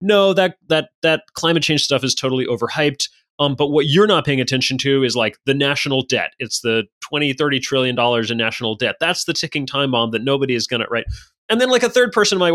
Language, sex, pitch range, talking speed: English, male, 125-170 Hz, 235 wpm